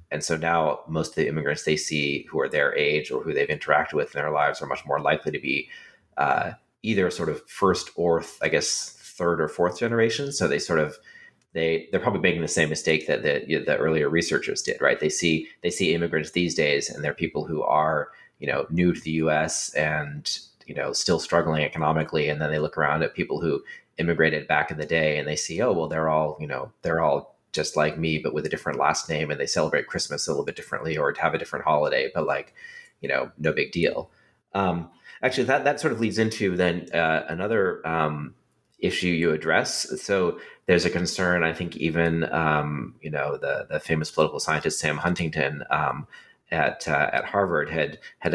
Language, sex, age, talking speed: English, male, 30-49, 220 wpm